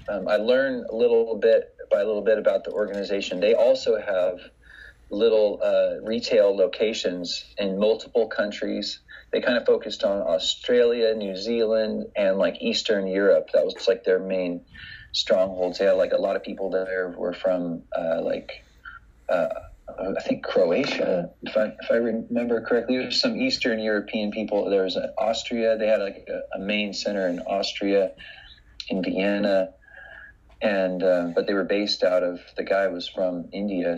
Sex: male